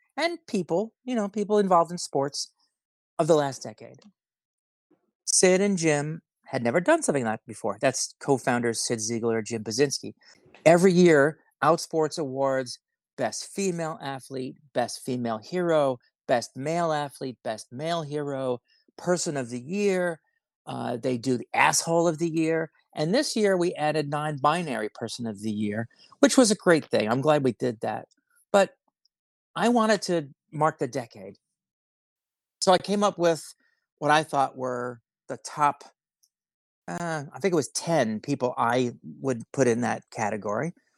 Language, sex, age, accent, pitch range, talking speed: English, male, 40-59, American, 125-175 Hz, 155 wpm